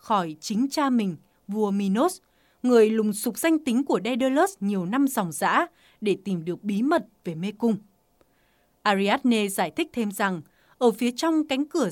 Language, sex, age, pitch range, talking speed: English, female, 20-39, 200-265 Hz, 175 wpm